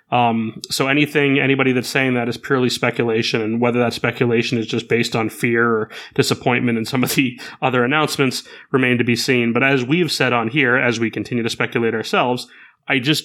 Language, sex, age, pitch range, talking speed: English, male, 30-49, 120-135 Hz, 205 wpm